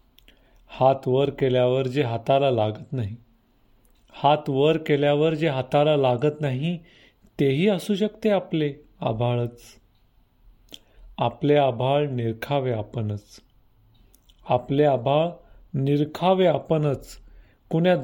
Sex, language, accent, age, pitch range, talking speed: male, Marathi, native, 40-59, 120-150 Hz, 95 wpm